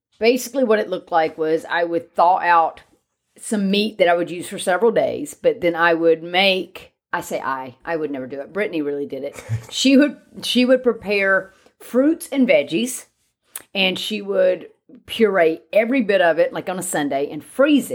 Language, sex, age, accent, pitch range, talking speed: English, female, 30-49, American, 165-235 Hz, 195 wpm